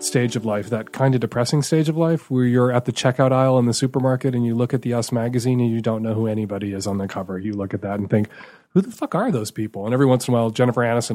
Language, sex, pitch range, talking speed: English, male, 110-145 Hz, 300 wpm